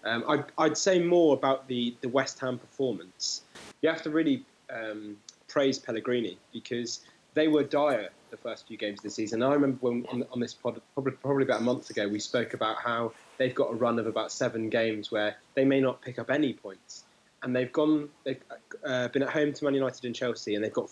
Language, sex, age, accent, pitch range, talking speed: English, male, 20-39, British, 115-135 Hz, 225 wpm